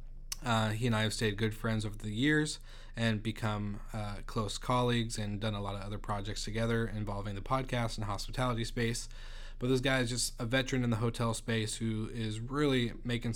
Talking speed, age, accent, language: 200 wpm, 20-39, American, English